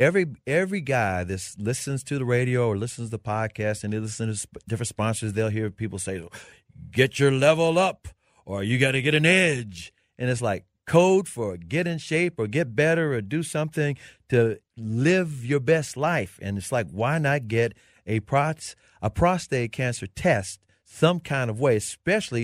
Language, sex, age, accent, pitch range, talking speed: English, male, 40-59, American, 110-165 Hz, 190 wpm